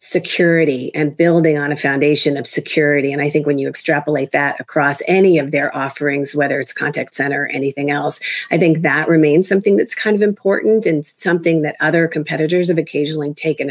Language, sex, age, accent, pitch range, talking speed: English, female, 40-59, American, 150-180 Hz, 195 wpm